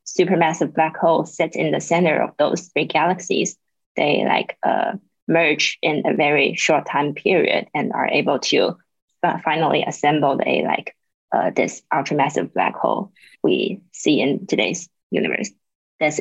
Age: 20-39